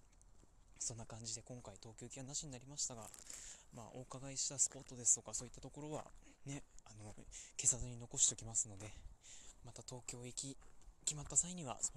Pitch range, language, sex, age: 110-135 Hz, Japanese, male, 20-39